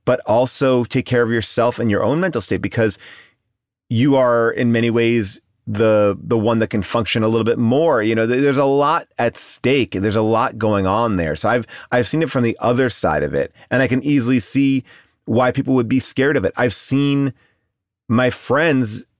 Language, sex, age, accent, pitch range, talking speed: English, male, 30-49, American, 95-125 Hz, 215 wpm